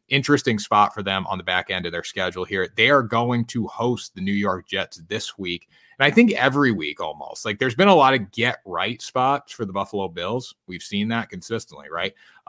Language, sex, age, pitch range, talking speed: English, male, 30-49, 95-115 Hz, 220 wpm